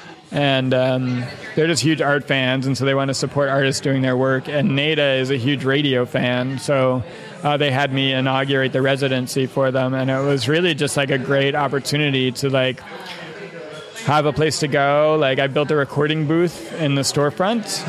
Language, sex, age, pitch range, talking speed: English, male, 30-49, 135-155 Hz, 200 wpm